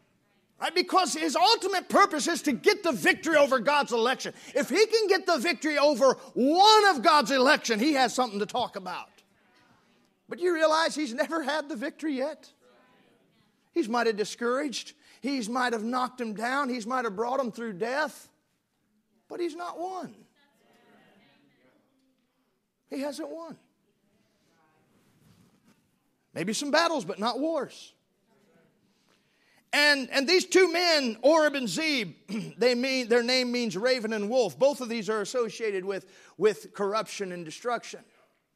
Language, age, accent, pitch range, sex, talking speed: English, 40-59, American, 225-295 Hz, male, 145 wpm